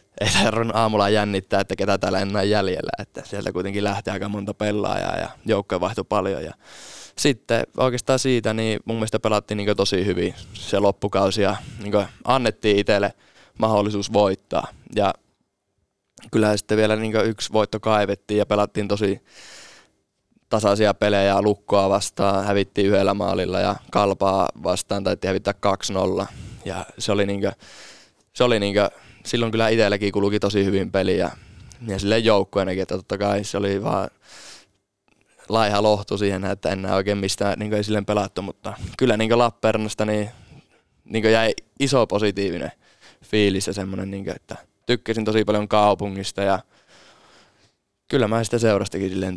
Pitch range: 100-110 Hz